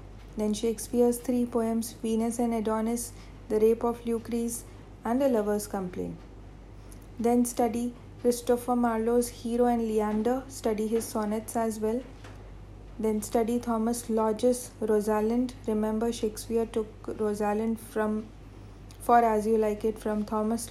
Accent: Indian